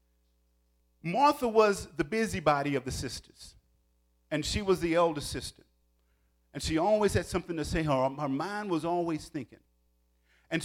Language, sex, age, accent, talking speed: English, male, 50-69, American, 150 wpm